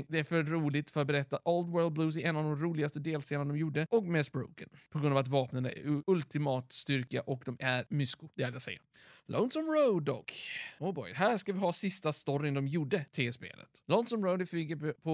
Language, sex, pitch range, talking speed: Swedish, male, 135-180 Hz, 230 wpm